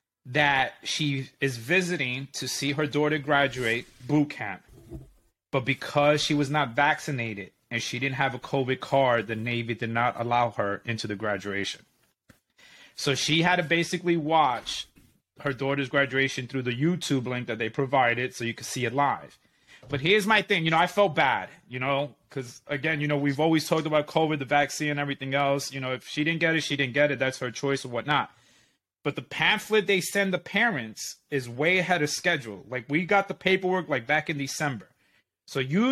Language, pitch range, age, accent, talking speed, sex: English, 130-170 Hz, 30-49, American, 195 wpm, male